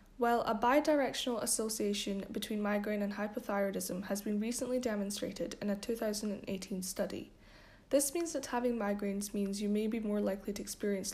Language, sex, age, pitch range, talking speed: English, female, 10-29, 200-240 Hz, 155 wpm